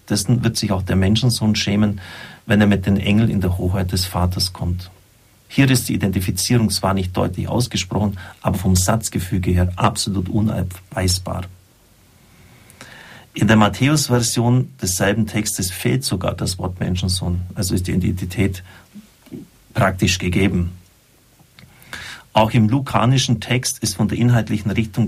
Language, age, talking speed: German, 50-69, 140 wpm